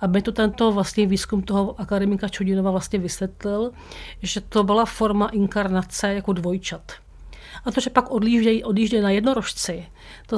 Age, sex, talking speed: 40-59, female, 145 wpm